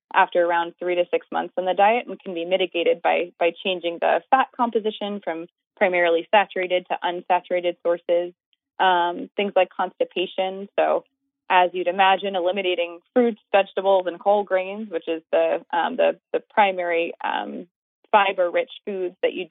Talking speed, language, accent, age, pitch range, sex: 155 wpm, English, American, 20-39, 175-230 Hz, female